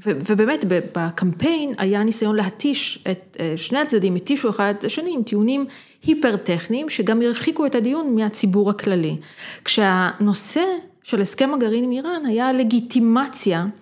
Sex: female